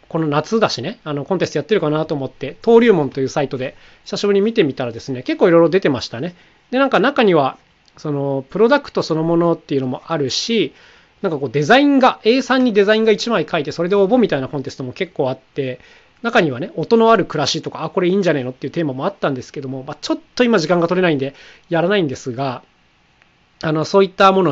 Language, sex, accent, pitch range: Japanese, male, native, 135-200 Hz